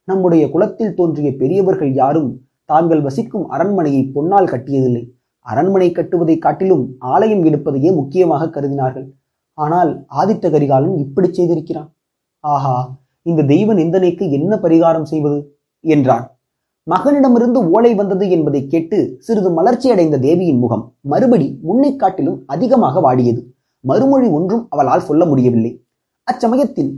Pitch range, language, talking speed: 130-200 Hz, Tamil, 110 wpm